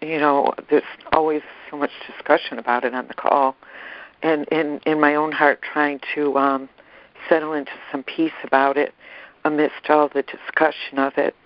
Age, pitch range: 60-79, 145-180 Hz